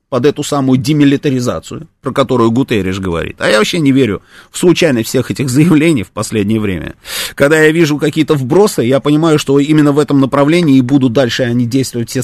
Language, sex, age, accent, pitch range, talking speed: Russian, male, 30-49, native, 120-175 Hz, 190 wpm